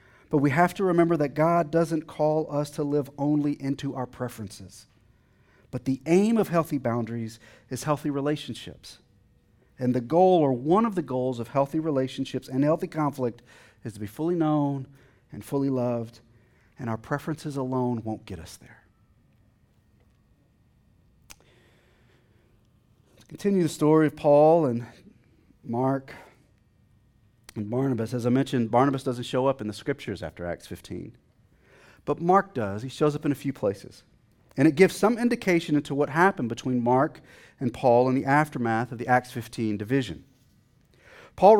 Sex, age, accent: male, 40-59, American